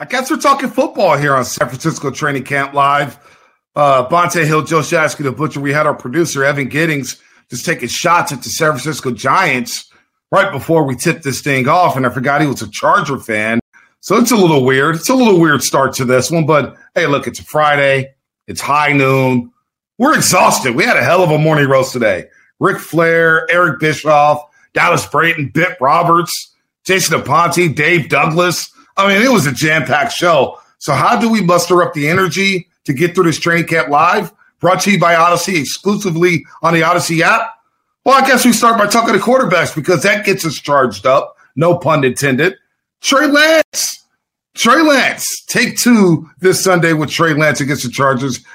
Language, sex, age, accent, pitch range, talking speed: English, male, 40-59, American, 135-180 Hz, 195 wpm